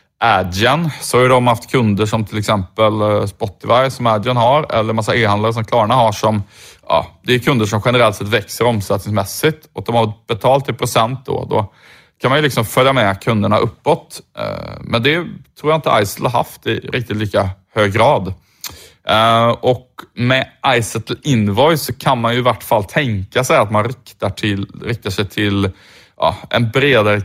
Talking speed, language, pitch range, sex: 180 wpm, Swedish, 100-125 Hz, male